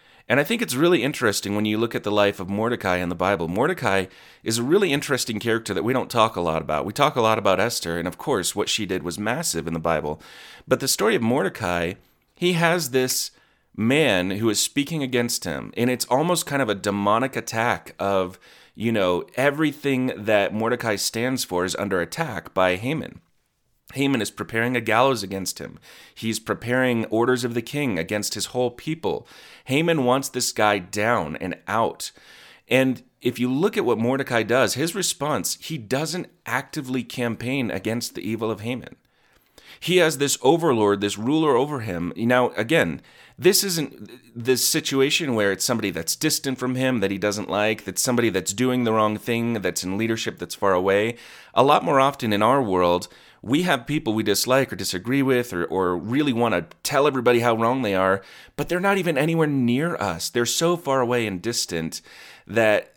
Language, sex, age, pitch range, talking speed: English, male, 30-49, 100-135 Hz, 195 wpm